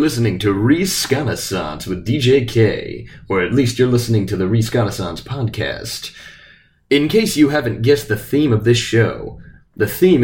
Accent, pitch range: American, 105-135 Hz